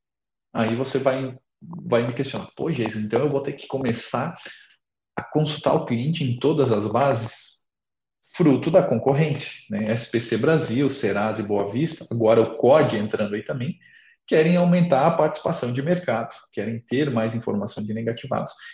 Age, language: 40-59, Portuguese